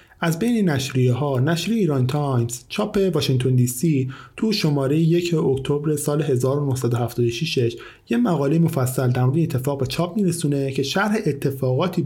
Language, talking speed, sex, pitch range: Persian, 145 wpm, male, 125-165 Hz